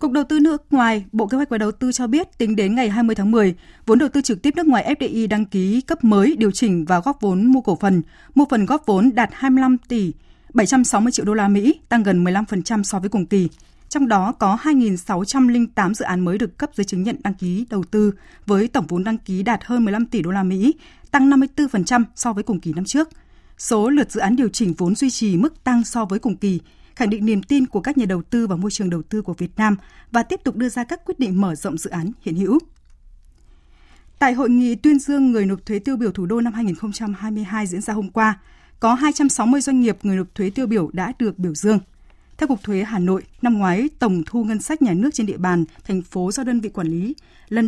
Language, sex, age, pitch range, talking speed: Vietnamese, female, 20-39, 195-255 Hz, 245 wpm